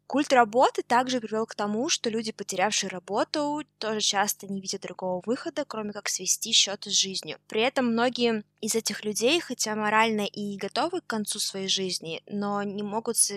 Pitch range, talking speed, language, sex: 190-235 Hz, 175 wpm, Russian, female